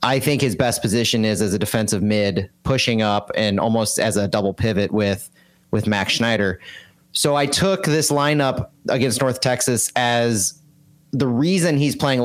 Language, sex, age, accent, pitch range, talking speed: English, male, 30-49, American, 110-135 Hz, 170 wpm